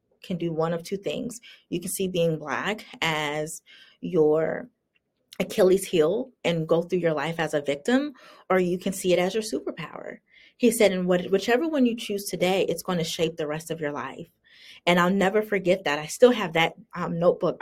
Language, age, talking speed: English, 30-49, 200 wpm